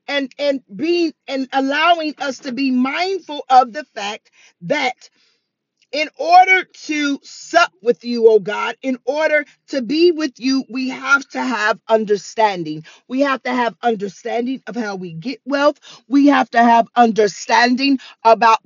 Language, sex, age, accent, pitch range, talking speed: English, female, 40-59, American, 235-280 Hz, 155 wpm